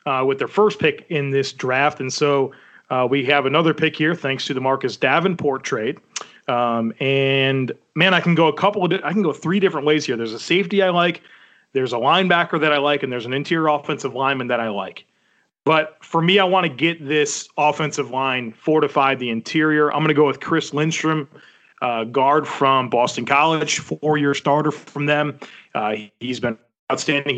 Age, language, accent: 30-49, English, American